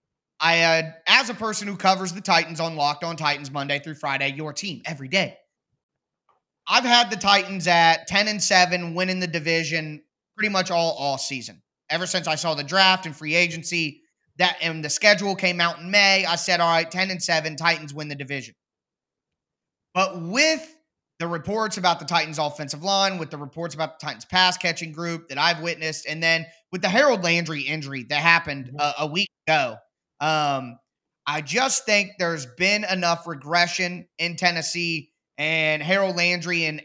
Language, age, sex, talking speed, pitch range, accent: English, 20-39, male, 180 wpm, 160-195 Hz, American